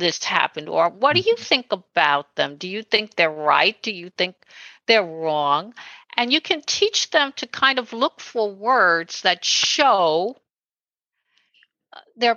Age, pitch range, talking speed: 60-79, 185-255 Hz, 160 wpm